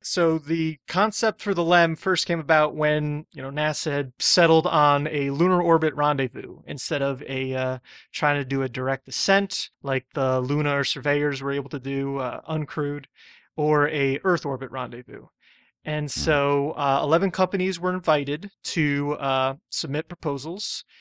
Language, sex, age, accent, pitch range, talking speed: English, male, 30-49, American, 140-165 Hz, 160 wpm